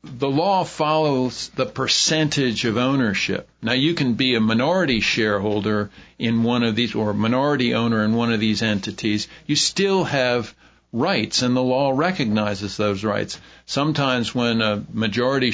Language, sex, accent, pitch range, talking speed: English, male, American, 110-135 Hz, 160 wpm